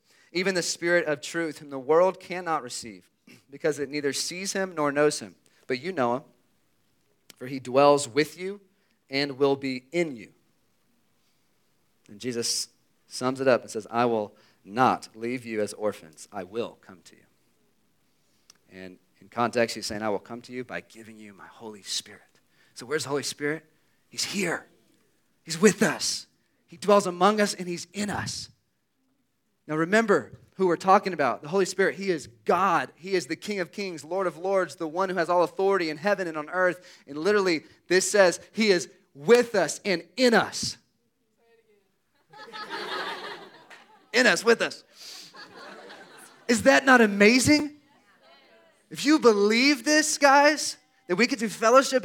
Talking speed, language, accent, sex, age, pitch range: 170 wpm, English, American, male, 40-59, 140-215 Hz